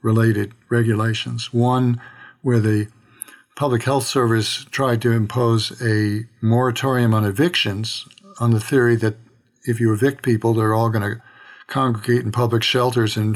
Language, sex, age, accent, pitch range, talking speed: English, male, 60-79, American, 110-130 Hz, 145 wpm